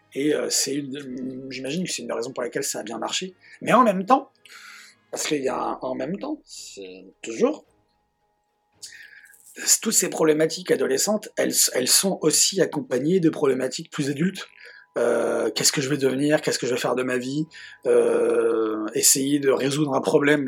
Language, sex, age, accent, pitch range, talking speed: French, male, 30-49, French, 125-160 Hz, 185 wpm